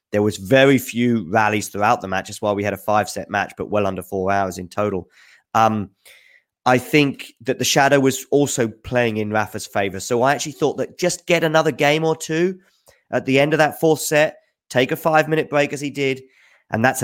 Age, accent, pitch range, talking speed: 20-39, British, 105-140 Hz, 215 wpm